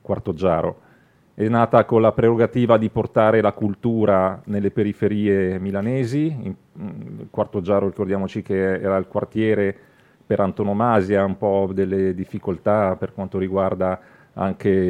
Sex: male